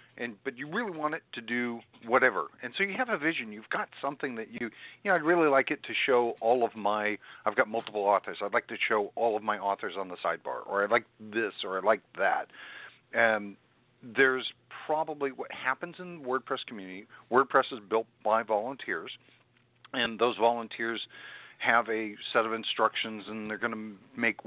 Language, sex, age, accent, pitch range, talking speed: English, male, 50-69, American, 110-155 Hz, 200 wpm